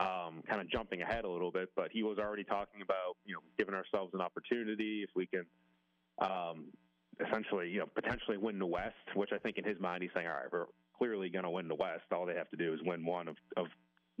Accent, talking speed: American, 240 wpm